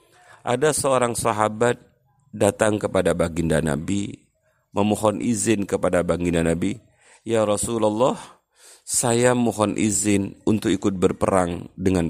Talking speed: 105 wpm